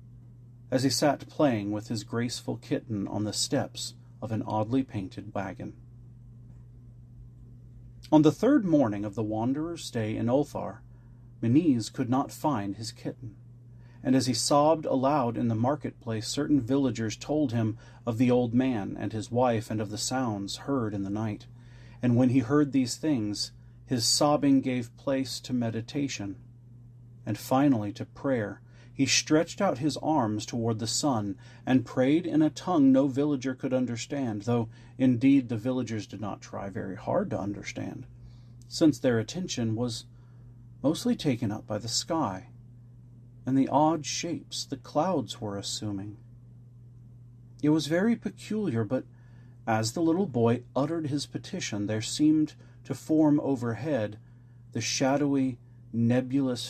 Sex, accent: male, American